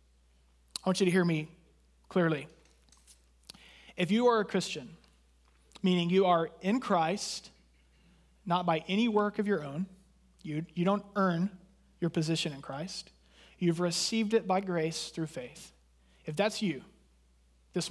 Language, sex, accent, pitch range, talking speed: English, male, American, 160-200 Hz, 145 wpm